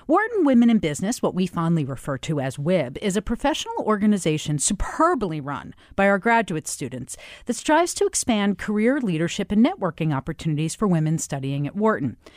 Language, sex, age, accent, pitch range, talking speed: English, female, 40-59, American, 185-255 Hz, 170 wpm